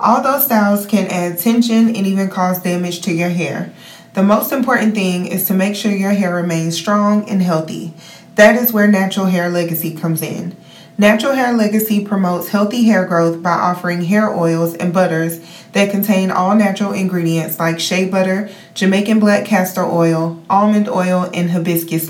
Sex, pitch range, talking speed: female, 170-210 Hz, 175 wpm